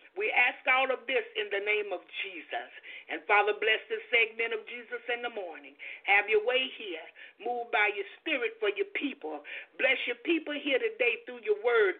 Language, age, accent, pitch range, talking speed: English, 50-69, American, 255-425 Hz, 195 wpm